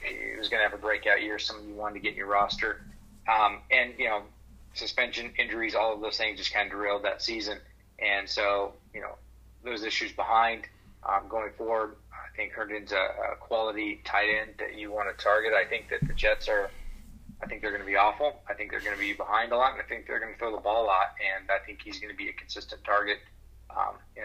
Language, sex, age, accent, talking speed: English, male, 30-49, American, 250 wpm